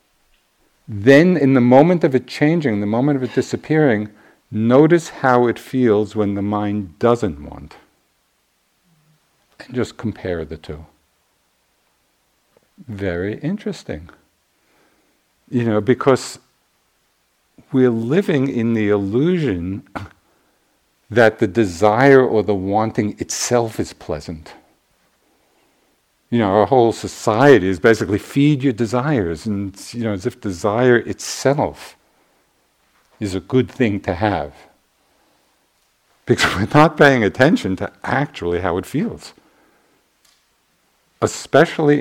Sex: male